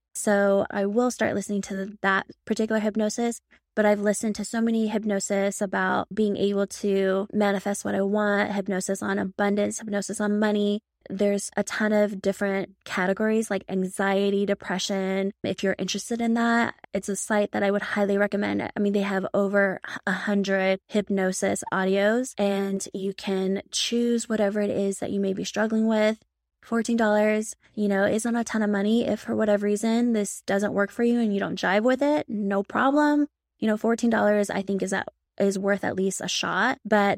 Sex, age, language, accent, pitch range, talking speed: female, 20-39, English, American, 195-215 Hz, 180 wpm